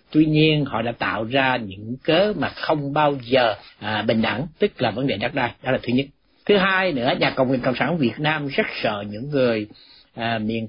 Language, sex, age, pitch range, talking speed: Vietnamese, male, 60-79, 120-160 Hz, 230 wpm